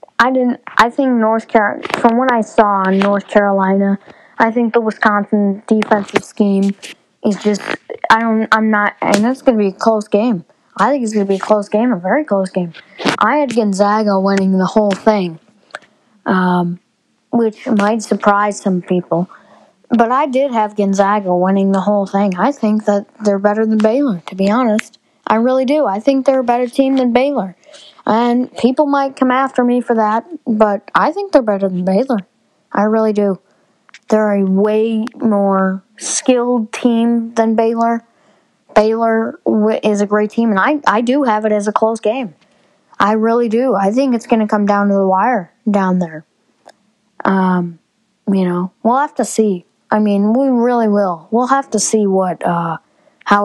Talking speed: 180 wpm